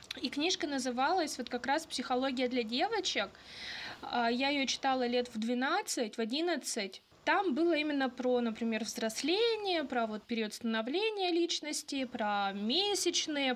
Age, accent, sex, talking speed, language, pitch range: 20-39, native, female, 130 wpm, Russian, 235-305 Hz